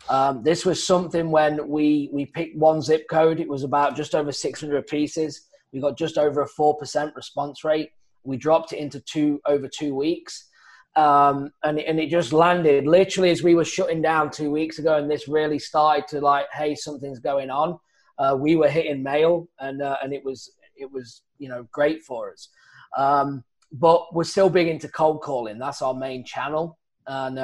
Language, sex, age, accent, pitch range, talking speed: English, male, 20-39, British, 140-165 Hz, 200 wpm